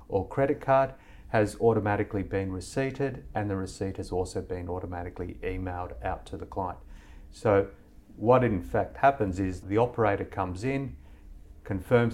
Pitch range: 90-105 Hz